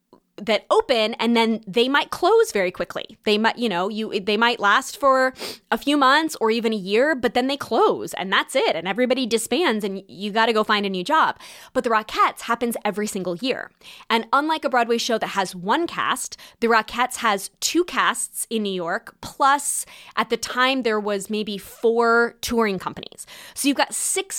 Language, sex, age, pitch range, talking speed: English, female, 20-39, 200-260 Hz, 200 wpm